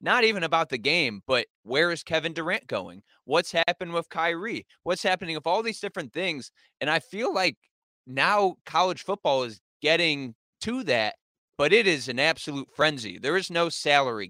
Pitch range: 140-185 Hz